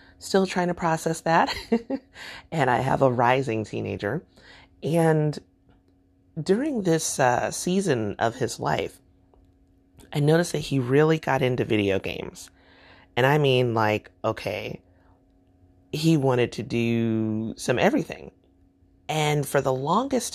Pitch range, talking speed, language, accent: 105-140 Hz, 125 wpm, English, American